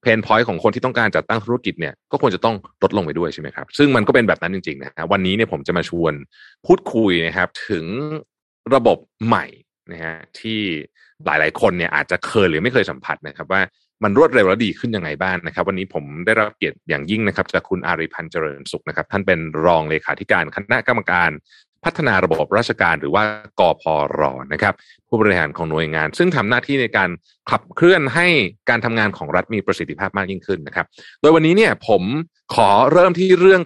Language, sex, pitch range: Thai, male, 85-130 Hz